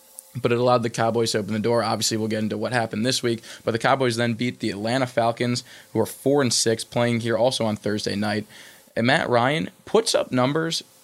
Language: English